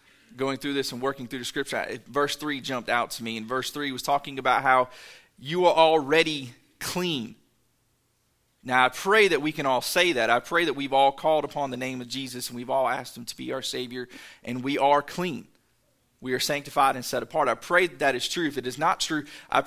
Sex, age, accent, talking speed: male, 30-49, American, 230 wpm